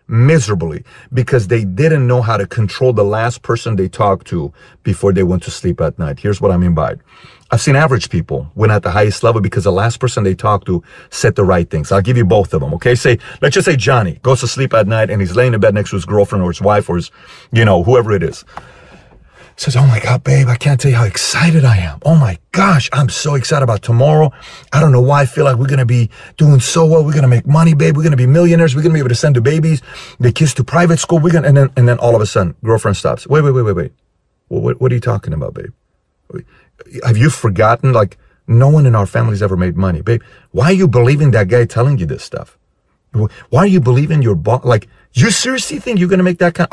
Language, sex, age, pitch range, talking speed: English, male, 40-59, 110-145 Hz, 260 wpm